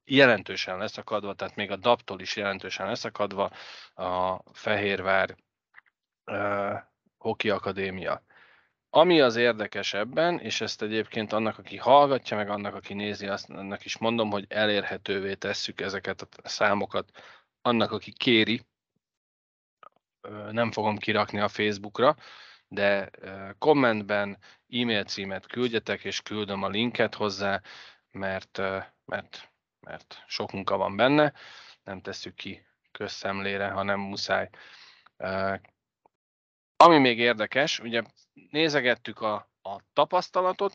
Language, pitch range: Hungarian, 100-115 Hz